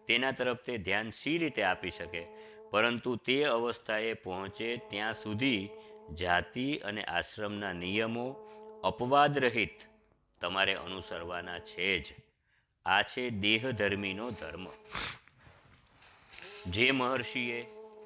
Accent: native